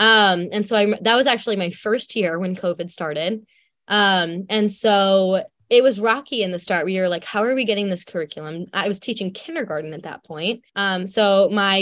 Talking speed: 210 wpm